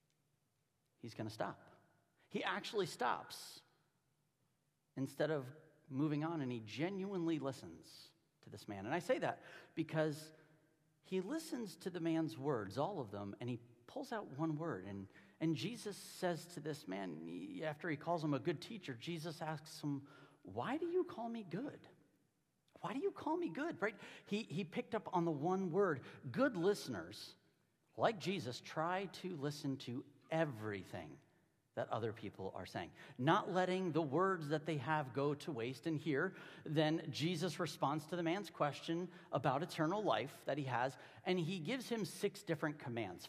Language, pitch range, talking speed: English, 135-175 Hz, 170 wpm